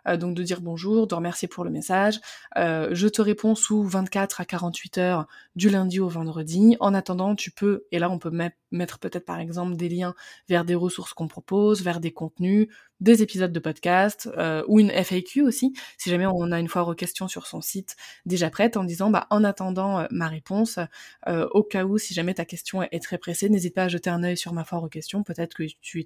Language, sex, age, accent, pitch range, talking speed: French, female, 20-39, French, 170-205 Hz, 230 wpm